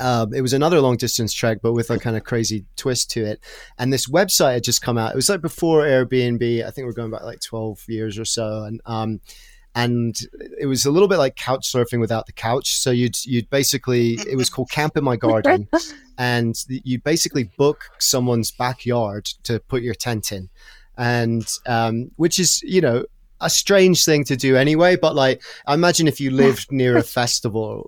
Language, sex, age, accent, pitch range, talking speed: English, male, 30-49, British, 115-135 Hz, 205 wpm